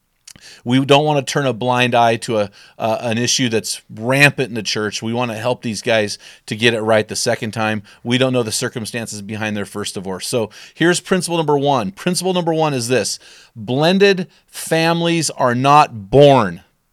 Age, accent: 40-59, American